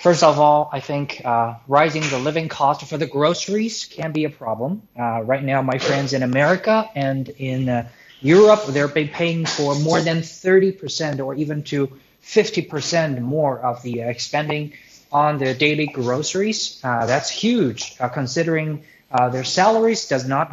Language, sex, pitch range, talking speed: English, male, 130-165 Hz, 165 wpm